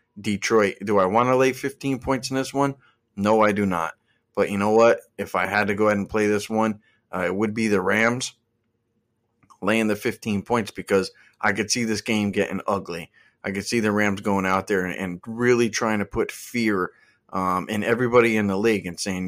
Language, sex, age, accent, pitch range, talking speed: English, male, 30-49, American, 100-115 Hz, 220 wpm